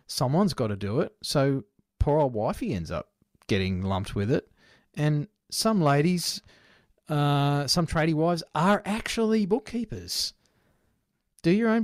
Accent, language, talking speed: Australian, English, 140 wpm